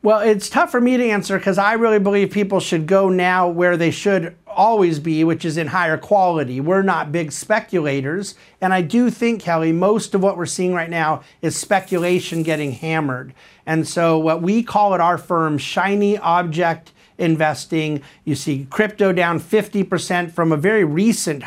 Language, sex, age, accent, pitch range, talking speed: English, male, 50-69, American, 160-200 Hz, 185 wpm